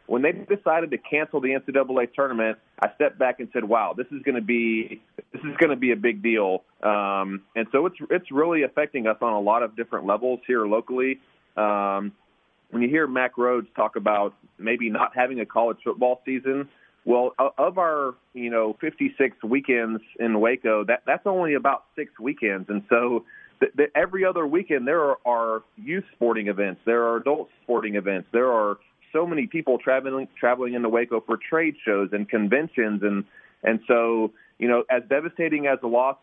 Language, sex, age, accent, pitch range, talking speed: English, male, 30-49, American, 110-140 Hz, 190 wpm